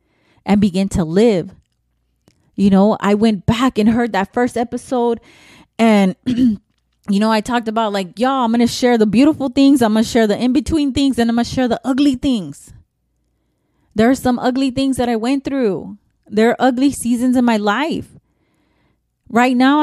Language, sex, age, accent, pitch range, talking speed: English, female, 20-39, American, 205-270 Hz, 180 wpm